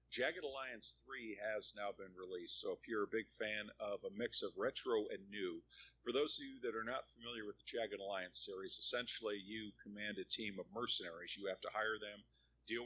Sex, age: male, 50-69